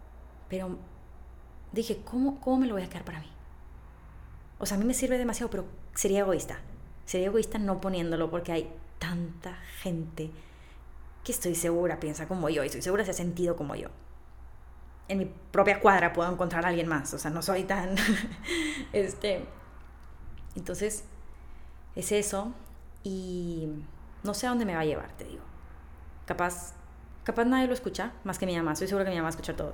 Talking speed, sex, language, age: 180 wpm, female, Spanish, 20-39